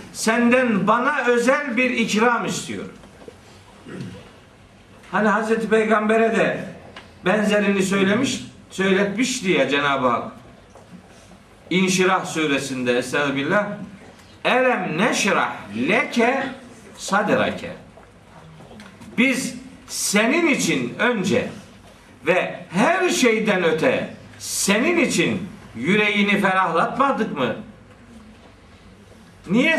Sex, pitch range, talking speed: male, 180-245 Hz, 75 wpm